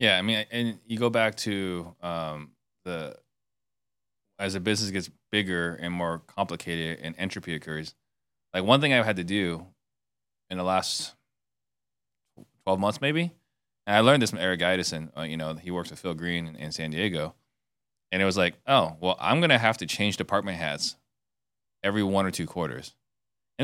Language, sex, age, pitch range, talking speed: English, male, 20-39, 85-115 Hz, 185 wpm